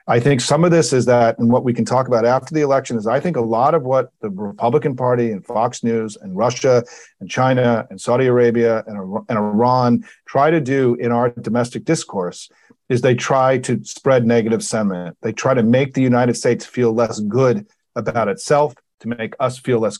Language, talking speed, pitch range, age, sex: English, 210 wpm, 115-145 Hz, 40-59, male